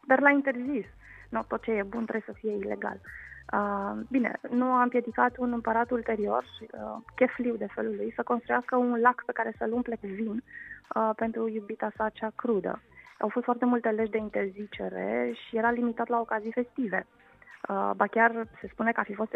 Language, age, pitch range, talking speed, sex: Romanian, 20-39, 215-245 Hz, 195 wpm, female